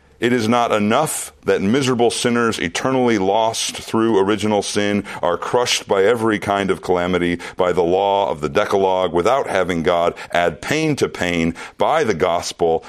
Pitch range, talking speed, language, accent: 95-130 Hz, 165 wpm, English, American